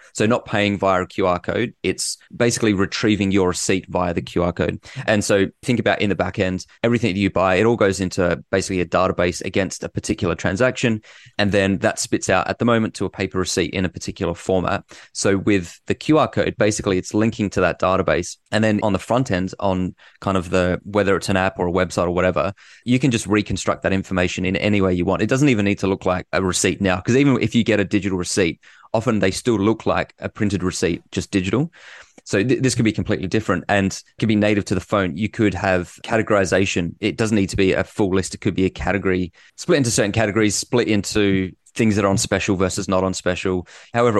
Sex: male